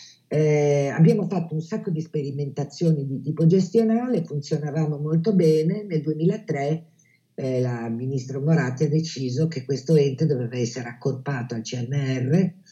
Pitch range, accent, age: 130-170 Hz, native, 50-69